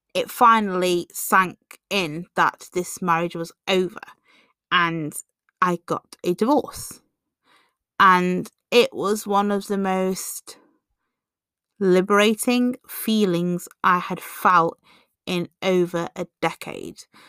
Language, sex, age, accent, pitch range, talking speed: English, female, 30-49, British, 175-215 Hz, 105 wpm